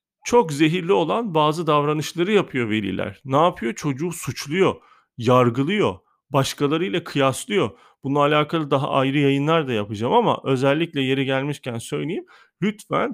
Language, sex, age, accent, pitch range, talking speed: Turkish, male, 40-59, native, 135-185 Hz, 125 wpm